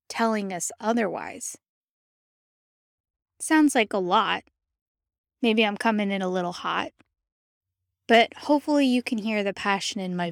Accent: American